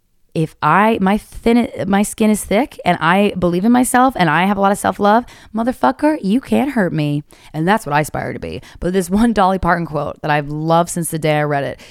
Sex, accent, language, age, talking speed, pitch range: female, American, English, 20-39, 235 wpm, 160-230 Hz